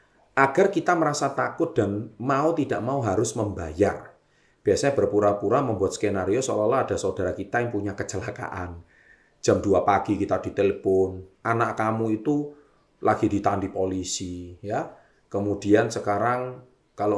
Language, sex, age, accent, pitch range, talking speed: Indonesian, male, 30-49, native, 100-130 Hz, 130 wpm